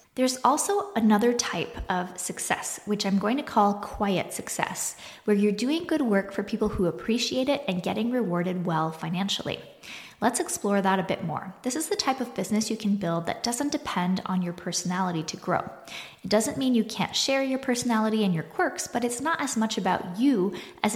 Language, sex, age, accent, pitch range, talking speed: English, female, 20-39, American, 185-245 Hz, 200 wpm